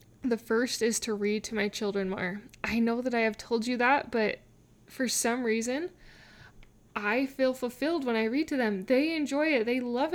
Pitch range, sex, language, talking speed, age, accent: 210-260 Hz, female, English, 200 wpm, 10-29, American